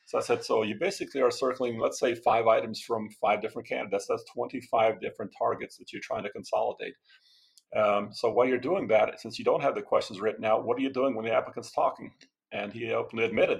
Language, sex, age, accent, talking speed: English, male, 40-59, American, 225 wpm